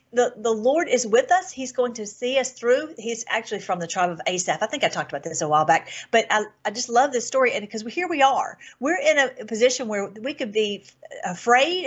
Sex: female